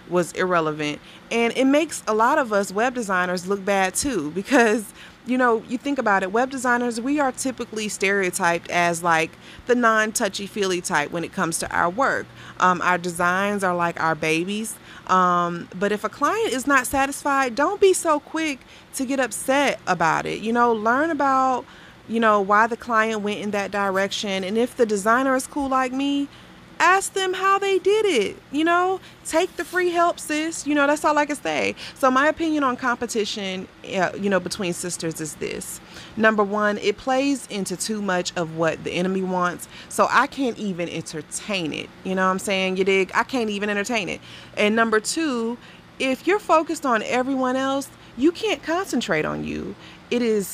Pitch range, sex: 185-270 Hz, female